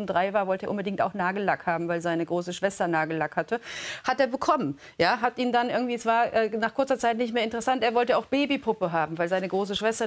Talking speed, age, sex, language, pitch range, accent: 240 wpm, 40-59, female, German, 195-255 Hz, German